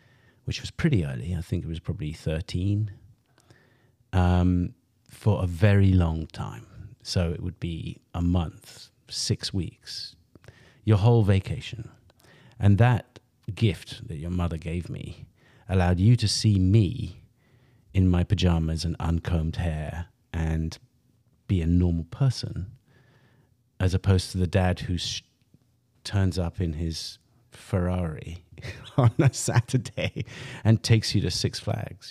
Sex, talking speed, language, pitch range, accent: male, 135 wpm, English, 90-120 Hz, British